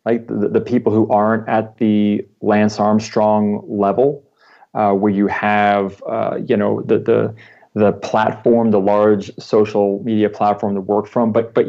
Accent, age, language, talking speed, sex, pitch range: American, 40-59, English, 165 wpm, male, 105-125 Hz